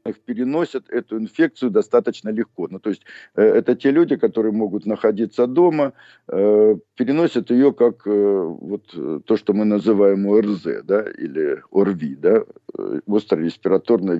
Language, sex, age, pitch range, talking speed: Russian, male, 50-69, 110-165 Hz, 125 wpm